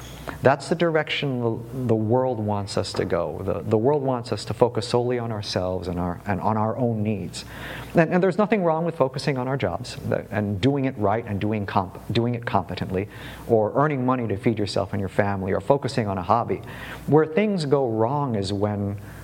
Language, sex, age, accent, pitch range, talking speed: English, male, 50-69, American, 100-125 Hz, 205 wpm